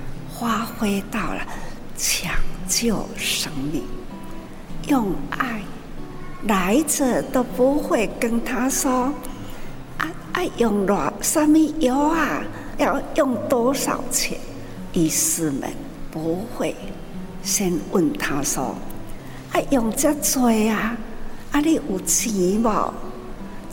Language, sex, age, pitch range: Chinese, female, 60-79, 165-255 Hz